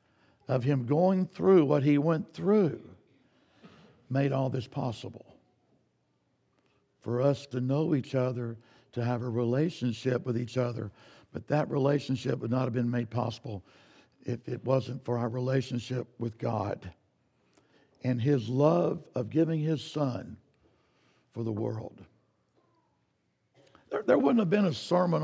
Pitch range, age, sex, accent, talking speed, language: 125-165 Hz, 60-79, male, American, 140 wpm, English